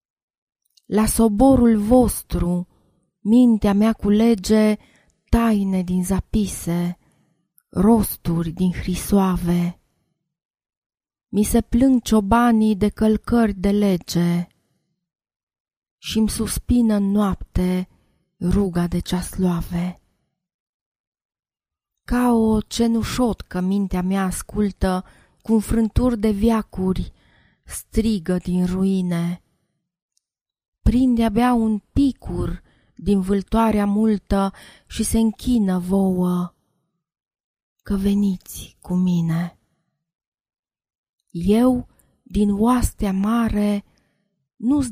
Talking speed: 85 wpm